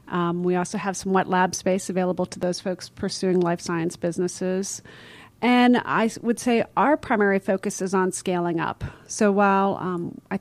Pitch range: 180-205 Hz